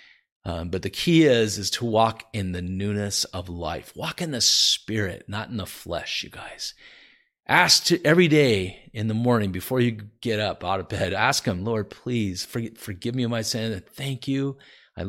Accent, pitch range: American, 100-130 Hz